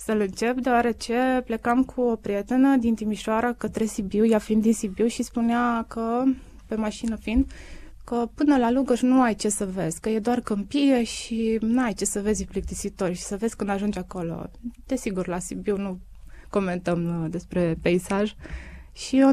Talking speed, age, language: 170 wpm, 20-39, Romanian